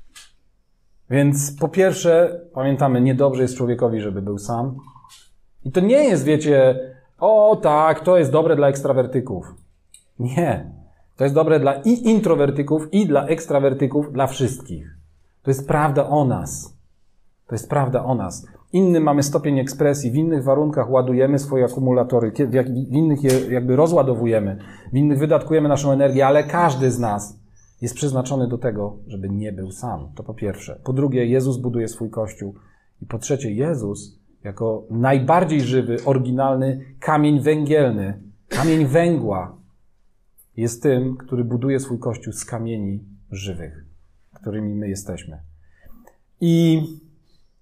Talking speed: 140 wpm